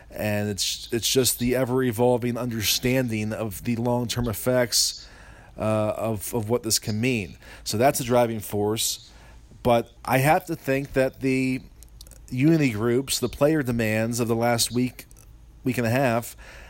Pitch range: 115-130 Hz